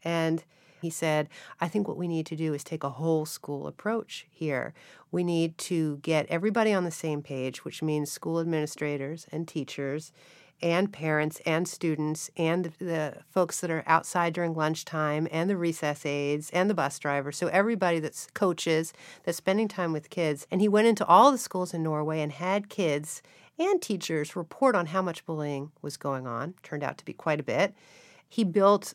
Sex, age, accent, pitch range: female, 50-69, American, 155-190 Hz